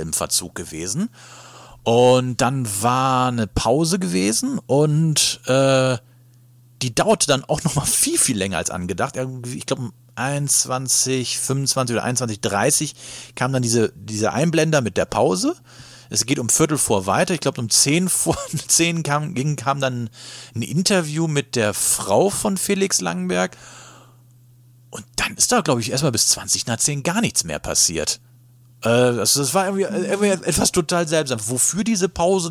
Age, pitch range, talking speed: 40-59, 115-150 Hz, 160 wpm